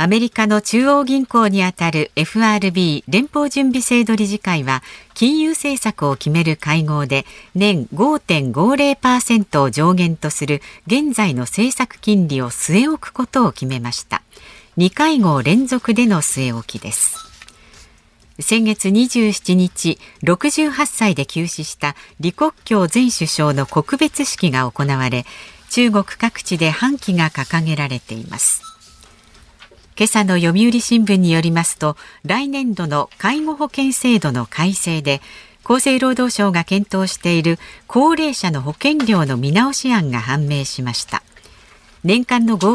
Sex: female